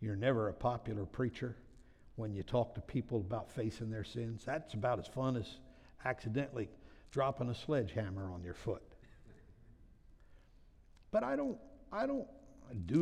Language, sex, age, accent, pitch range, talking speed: English, male, 60-79, American, 95-130 Hz, 145 wpm